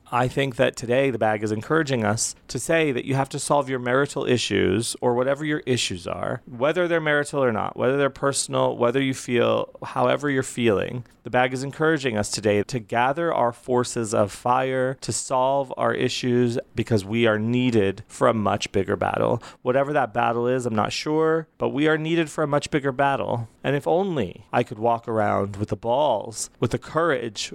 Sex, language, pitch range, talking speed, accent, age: male, English, 110-135 Hz, 200 wpm, American, 30-49